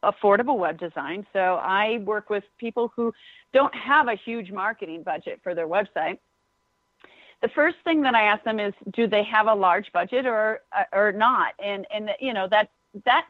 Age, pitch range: 40-59, 200-255 Hz